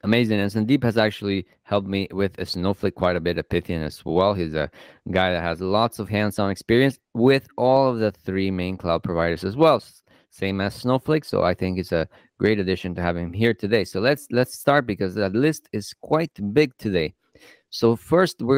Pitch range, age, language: 95-120 Hz, 20-39, English